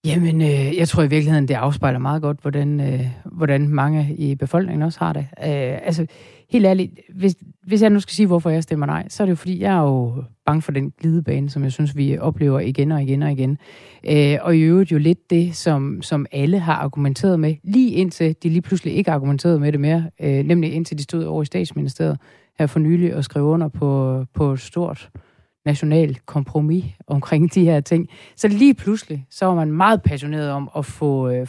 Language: Danish